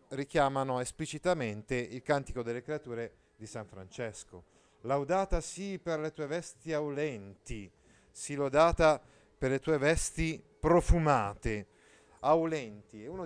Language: Italian